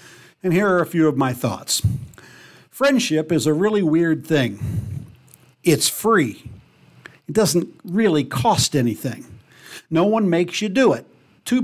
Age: 60-79